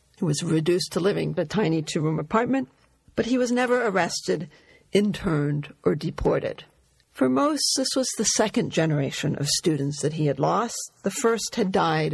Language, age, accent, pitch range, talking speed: English, 50-69, American, 155-210 Hz, 175 wpm